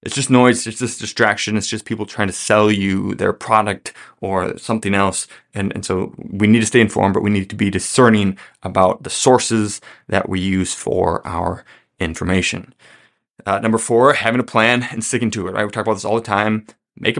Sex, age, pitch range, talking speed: male, 20-39, 100-125 Hz, 210 wpm